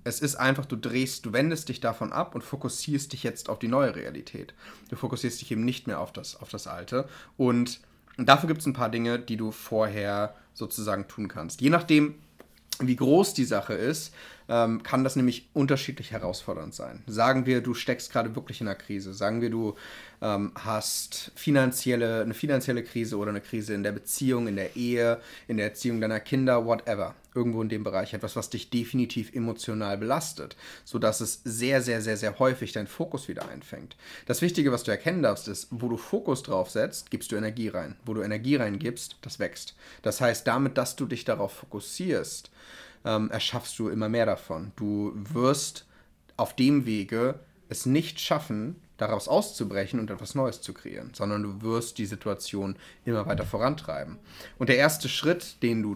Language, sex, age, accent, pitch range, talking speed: German, male, 30-49, German, 105-130 Hz, 185 wpm